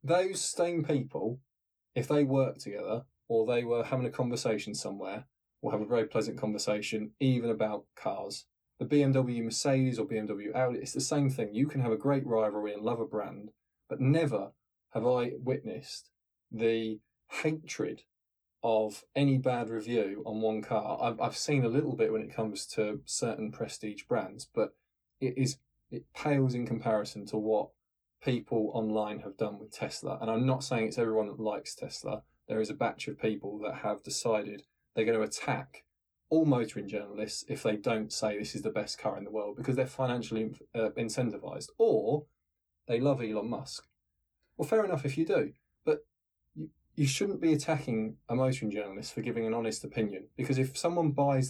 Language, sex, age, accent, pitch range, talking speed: English, male, 20-39, British, 110-140 Hz, 180 wpm